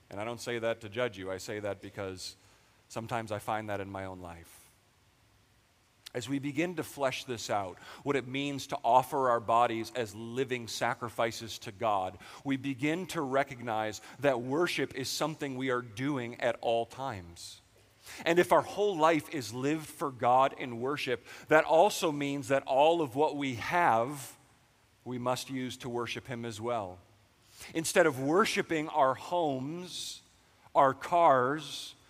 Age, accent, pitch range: 40-59, American, 115-155 Hz